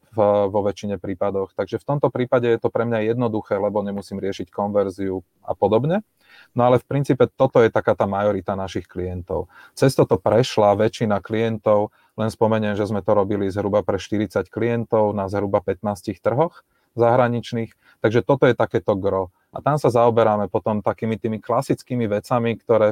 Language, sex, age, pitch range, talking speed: Czech, male, 30-49, 100-120 Hz, 170 wpm